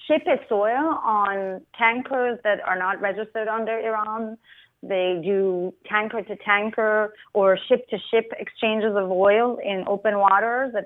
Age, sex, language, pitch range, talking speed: 30-49, female, English, 195-235 Hz, 150 wpm